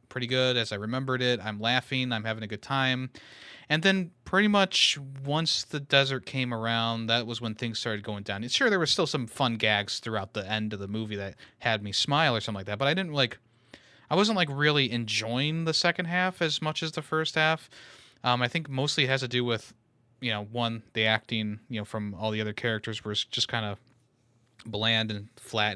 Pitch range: 110-140 Hz